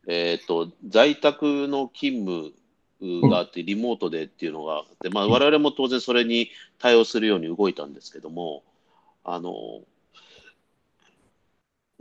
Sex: male